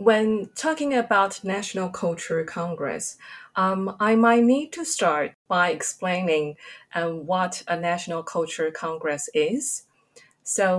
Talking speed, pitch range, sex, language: 120 wpm, 165-205 Hz, female, English